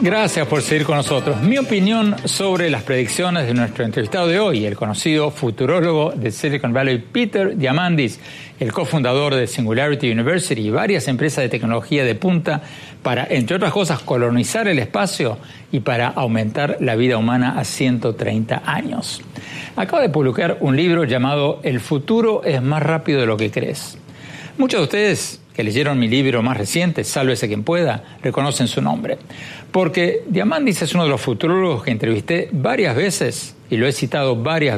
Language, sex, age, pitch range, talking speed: Spanish, male, 60-79, 125-170 Hz, 165 wpm